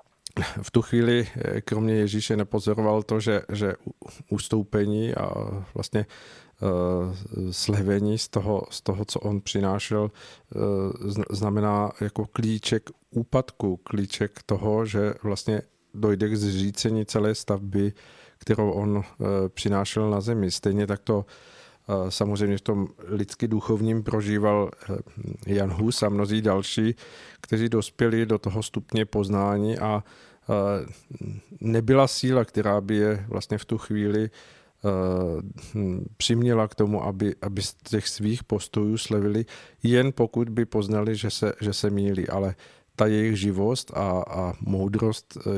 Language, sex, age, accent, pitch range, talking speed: Czech, male, 40-59, native, 100-110 Hz, 120 wpm